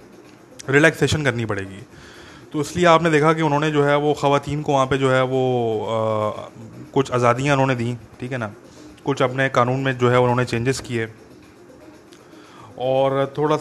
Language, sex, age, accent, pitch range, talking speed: English, male, 20-39, Indian, 120-150 Hz, 170 wpm